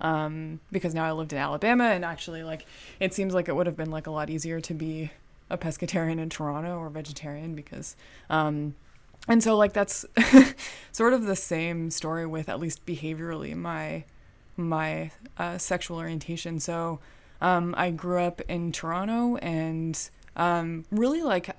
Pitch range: 160-190 Hz